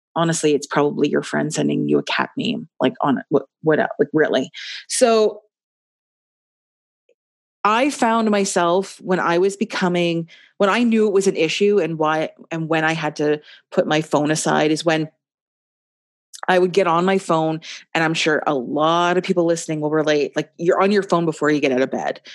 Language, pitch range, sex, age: English, 150-195 Hz, female, 30-49